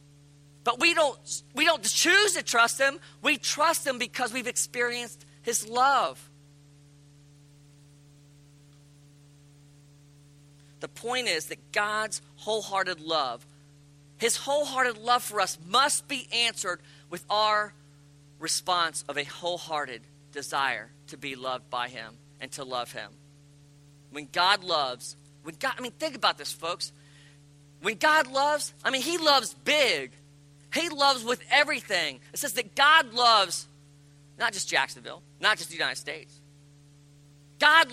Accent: American